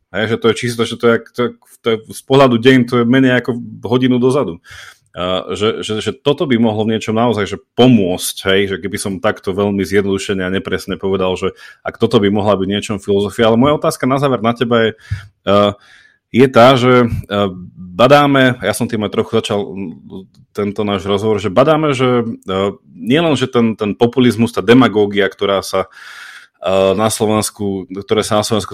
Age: 30-49